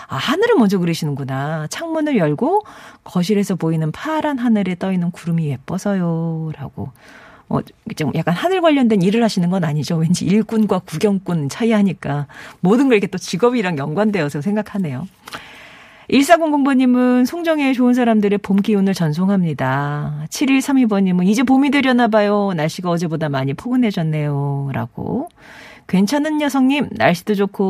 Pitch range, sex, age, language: 165-245 Hz, female, 40-59, Korean